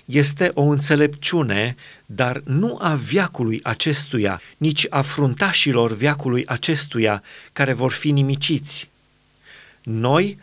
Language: Romanian